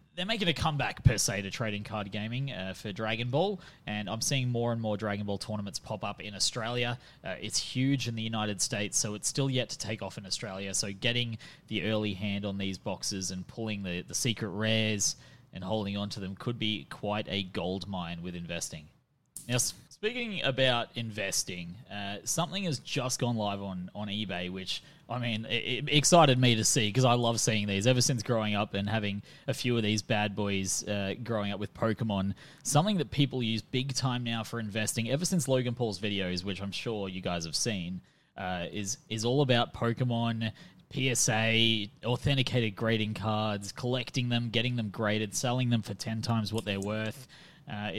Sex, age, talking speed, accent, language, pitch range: male, 20-39, 200 wpm, Australian, English, 100-125 Hz